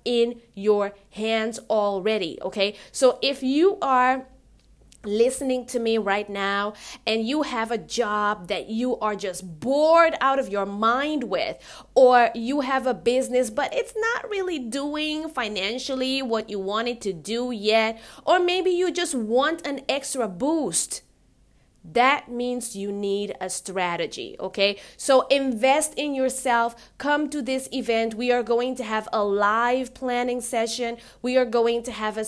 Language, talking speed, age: English, 160 wpm, 20-39